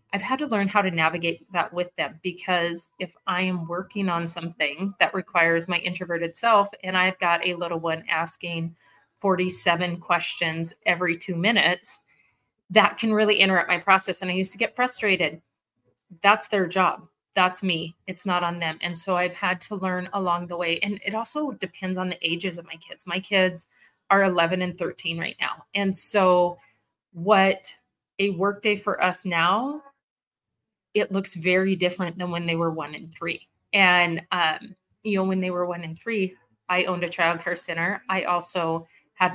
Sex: female